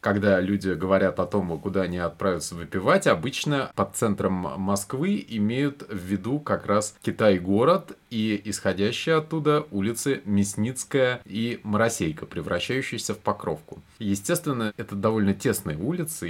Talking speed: 125 wpm